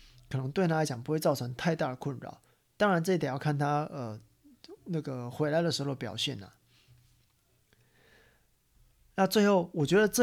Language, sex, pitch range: Chinese, male, 130-180 Hz